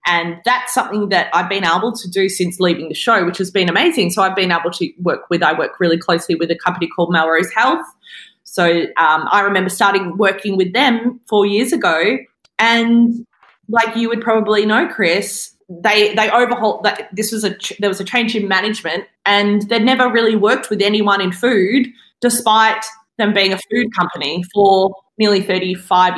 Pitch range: 190-235 Hz